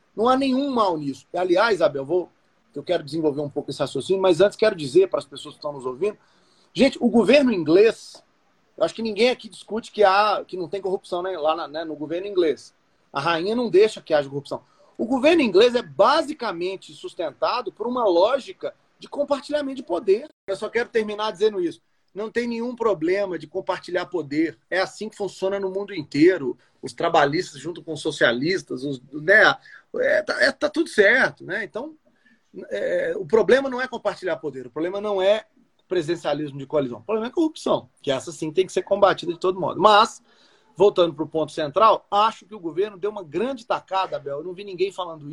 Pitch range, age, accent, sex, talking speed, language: 165-270 Hz, 30-49, Brazilian, male, 205 wpm, Portuguese